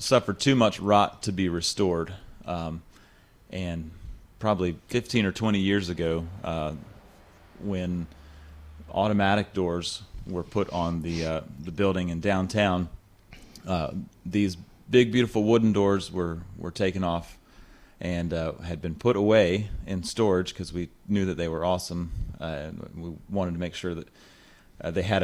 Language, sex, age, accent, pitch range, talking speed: English, male, 30-49, American, 85-105 Hz, 150 wpm